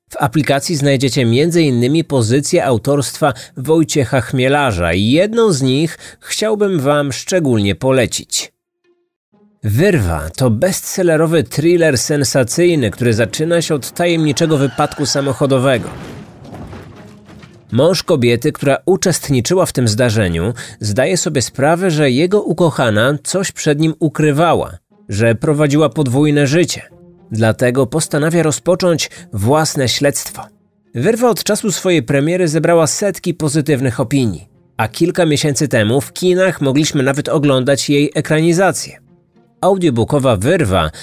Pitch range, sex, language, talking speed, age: 130-170 Hz, male, Polish, 110 wpm, 30-49